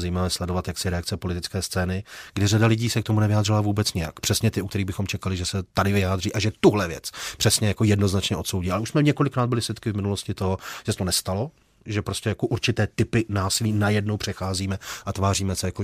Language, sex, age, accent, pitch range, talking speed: Czech, male, 40-59, native, 95-115 Hz, 215 wpm